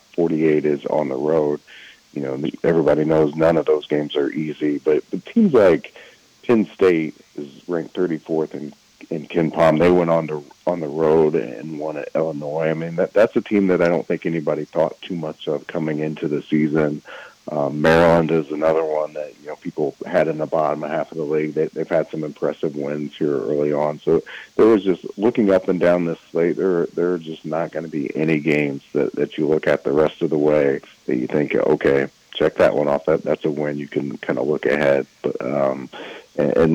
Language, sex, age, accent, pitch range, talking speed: English, male, 40-59, American, 75-80 Hz, 220 wpm